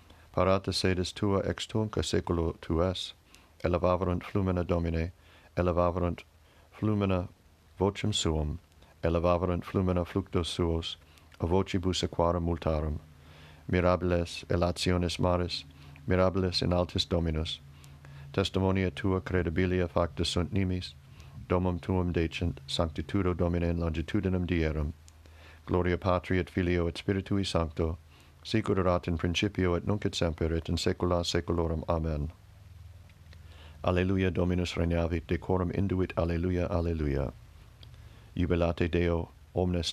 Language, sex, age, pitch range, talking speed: English, male, 60-79, 85-95 Hz, 105 wpm